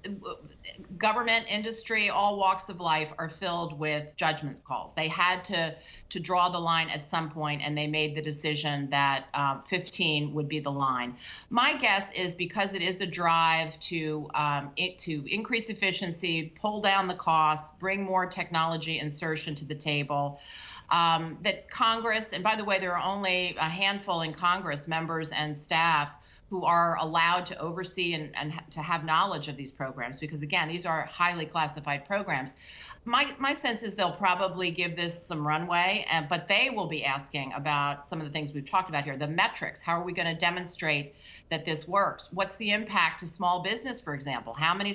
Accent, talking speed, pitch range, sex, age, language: American, 185 wpm, 150-185 Hz, female, 40-59, English